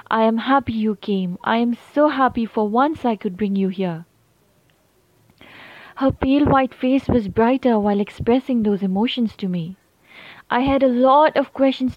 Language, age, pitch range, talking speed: Hindi, 20-39, 225-270 Hz, 170 wpm